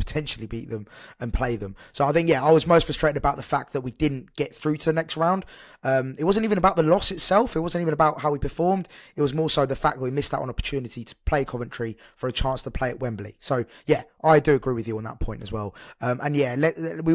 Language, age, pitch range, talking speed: English, 20-39, 130-165 Hz, 275 wpm